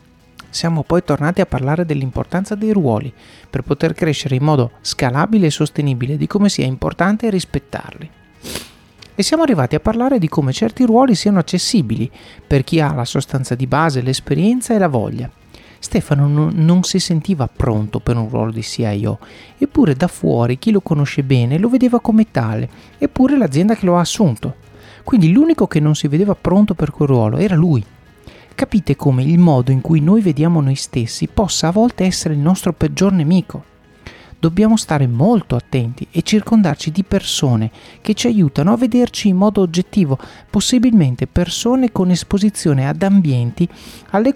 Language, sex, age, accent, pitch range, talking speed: Italian, male, 40-59, native, 135-200 Hz, 165 wpm